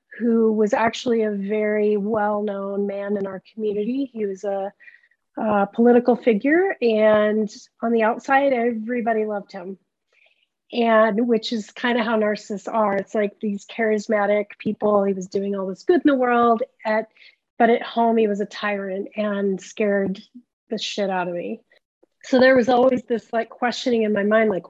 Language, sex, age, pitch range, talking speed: English, female, 30-49, 205-235 Hz, 170 wpm